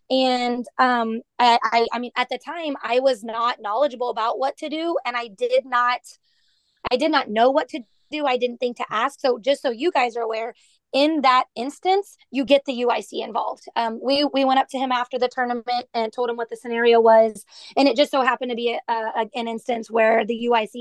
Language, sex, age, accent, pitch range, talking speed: English, female, 20-39, American, 225-260 Hz, 225 wpm